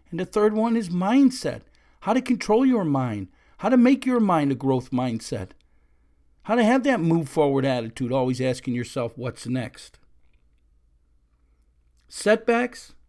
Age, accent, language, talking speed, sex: 50-69, American, English, 140 wpm, male